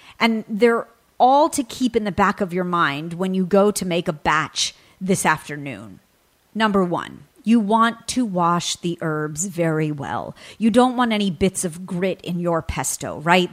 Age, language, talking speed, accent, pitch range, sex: 40-59, English, 180 wpm, American, 170-225 Hz, female